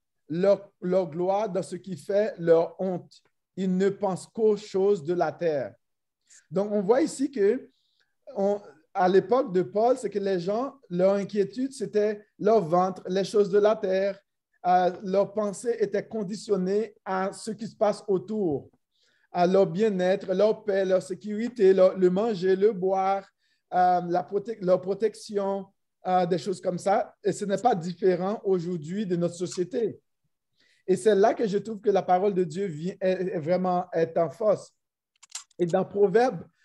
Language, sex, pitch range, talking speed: French, male, 185-220 Hz, 165 wpm